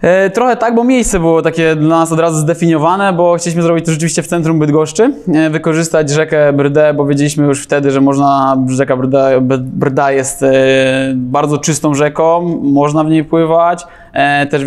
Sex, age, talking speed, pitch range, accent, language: male, 20-39, 160 wpm, 145-175 Hz, native, Polish